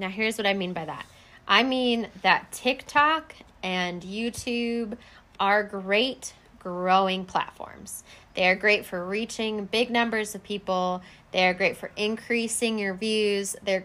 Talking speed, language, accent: 145 wpm, English, American